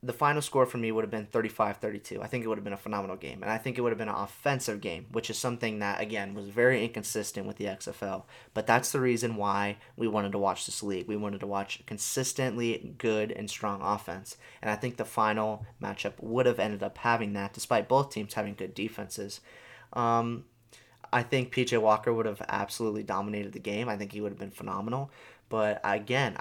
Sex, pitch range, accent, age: male, 105-120 Hz, American, 20-39